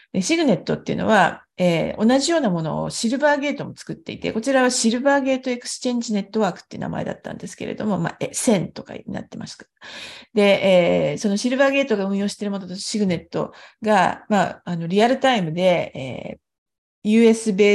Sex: female